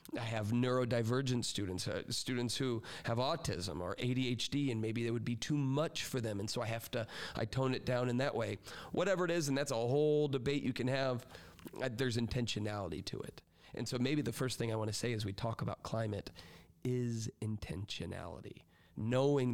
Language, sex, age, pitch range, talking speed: English, male, 40-59, 110-130 Hz, 205 wpm